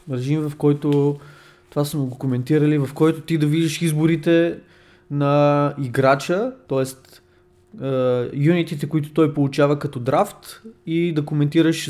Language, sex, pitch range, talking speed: Bulgarian, male, 130-165 Hz, 130 wpm